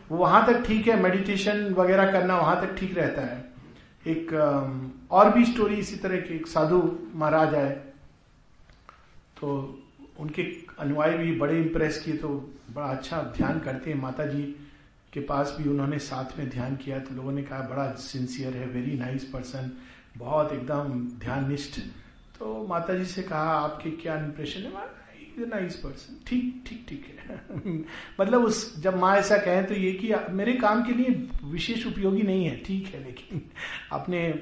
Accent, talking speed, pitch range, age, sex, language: native, 160 wpm, 140-190 Hz, 50-69, male, Hindi